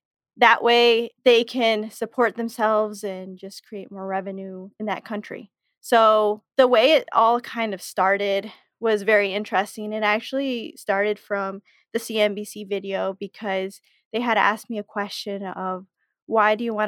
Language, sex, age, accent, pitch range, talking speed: English, female, 20-39, American, 195-230 Hz, 155 wpm